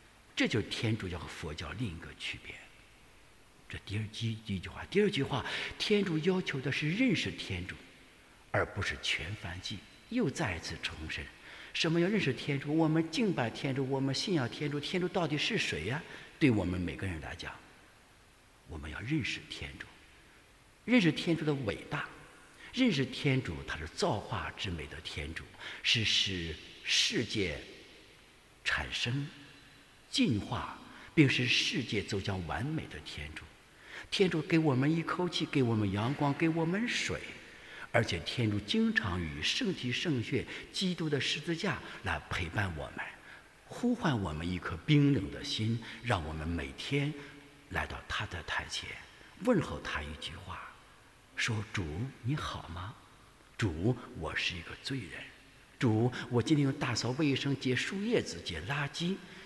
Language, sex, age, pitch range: English, male, 60-79, 95-150 Hz